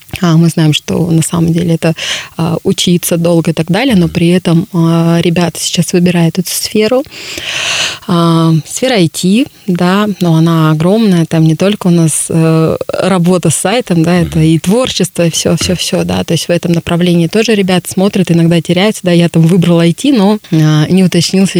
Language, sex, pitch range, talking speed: Russian, female, 165-185 Hz, 185 wpm